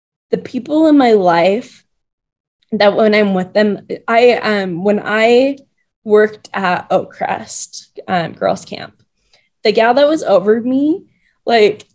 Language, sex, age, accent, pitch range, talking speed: English, female, 20-39, American, 195-240 Hz, 140 wpm